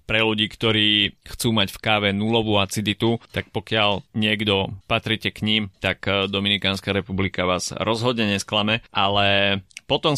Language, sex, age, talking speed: Slovak, male, 30-49, 135 wpm